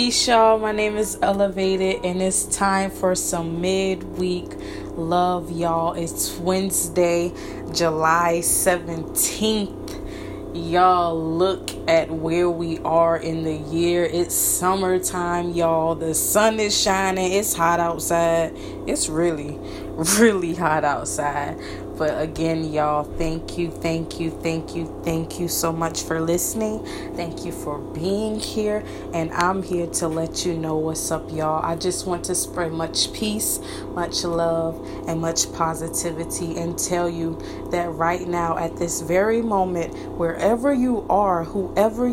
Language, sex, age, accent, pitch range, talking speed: English, female, 20-39, American, 165-190 Hz, 140 wpm